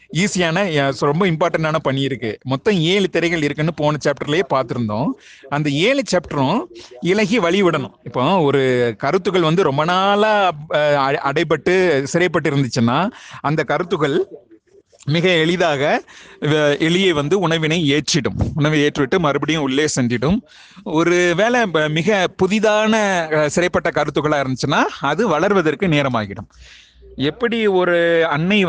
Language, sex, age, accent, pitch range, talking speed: Tamil, male, 30-49, native, 140-180 Hz, 110 wpm